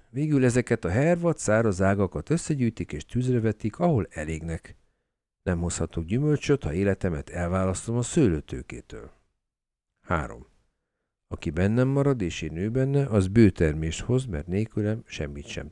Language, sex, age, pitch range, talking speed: Hungarian, male, 50-69, 85-125 Hz, 135 wpm